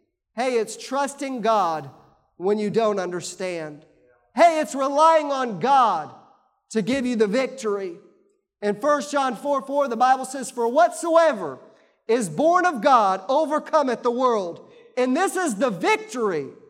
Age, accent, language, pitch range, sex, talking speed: 40-59, American, English, 215-300 Hz, male, 145 wpm